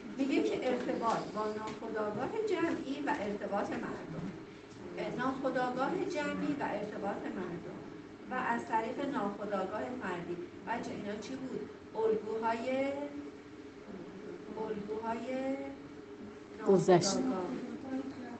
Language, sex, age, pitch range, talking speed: Persian, female, 40-59, 200-265 Hz, 85 wpm